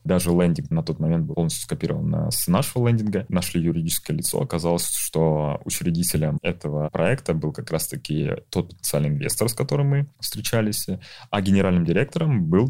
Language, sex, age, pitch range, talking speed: Russian, male, 20-39, 80-100 Hz, 155 wpm